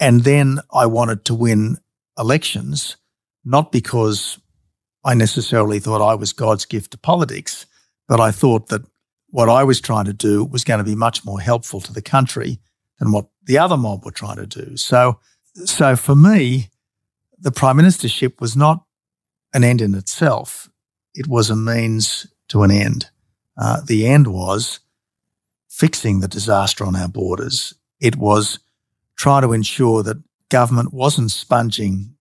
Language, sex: English, male